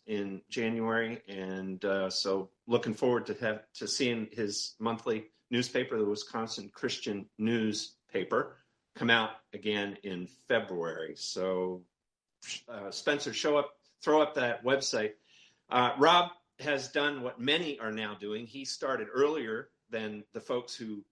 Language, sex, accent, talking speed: English, male, American, 135 wpm